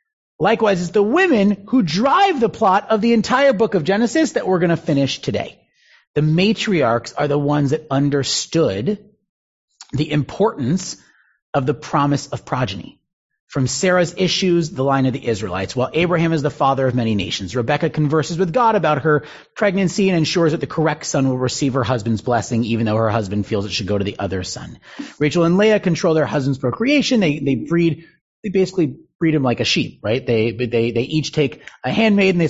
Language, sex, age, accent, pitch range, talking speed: English, male, 30-49, American, 125-180 Hz, 195 wpm